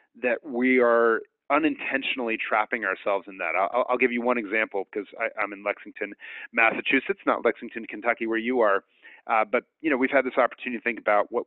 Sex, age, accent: male, 30-49, American